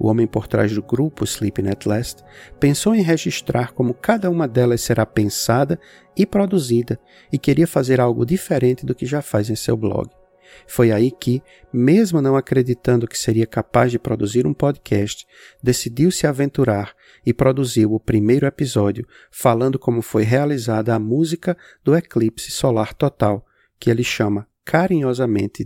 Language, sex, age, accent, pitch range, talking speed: Portuguese, male, 50-69, Brazilian, 110-145 Hz, 155 wpm